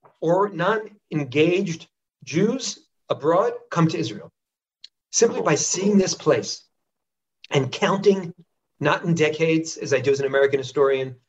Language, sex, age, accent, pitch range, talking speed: English, male, 40-59, American, 135-180 Hz, 135 wpm